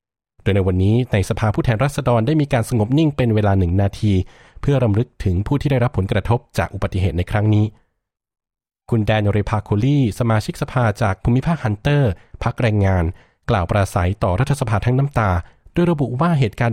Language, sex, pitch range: Thai, male, 100-130 Hz